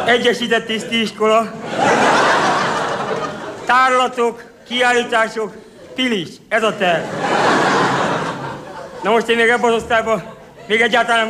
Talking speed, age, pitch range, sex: 90 wpm, 50-69, 220-260 Hz, male